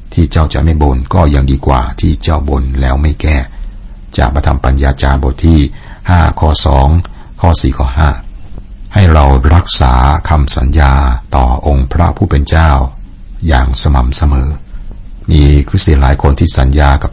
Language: Thai